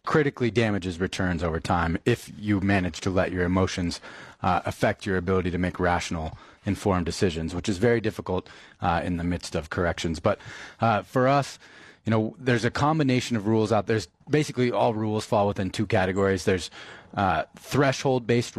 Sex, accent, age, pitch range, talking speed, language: male, American, 30-49, 95-115 Hz, 180 wpm, English